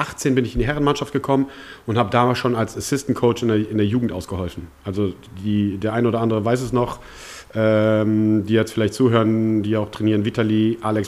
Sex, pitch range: male, 105-120 Hz